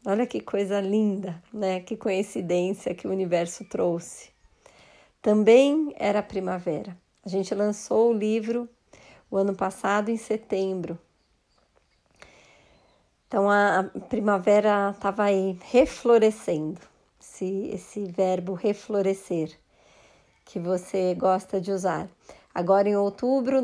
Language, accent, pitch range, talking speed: Portuguese, Brazilian, 185-220 Hz, 110 wpm